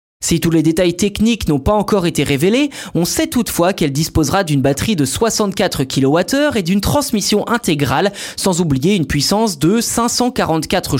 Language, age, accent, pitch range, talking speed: French, 20-39, French, 155-215 Hz, 165 wpm